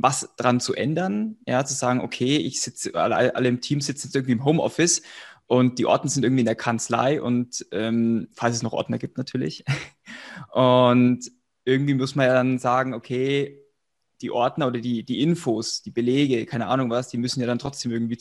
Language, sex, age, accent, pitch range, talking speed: German, male, 20-39, German, 120-140 Hz, 200 wpm